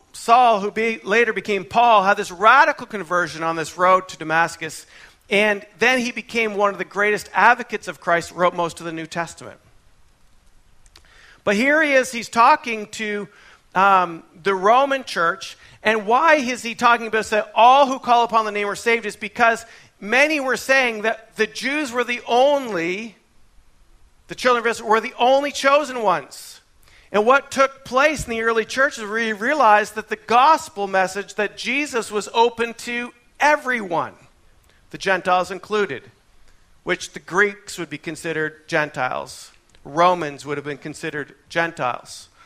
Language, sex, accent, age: English, male, American, 40-59